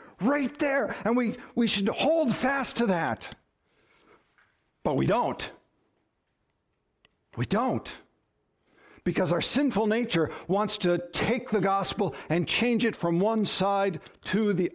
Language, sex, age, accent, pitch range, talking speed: English, male, 60-79, American, 165-210 Hz, 130 wpm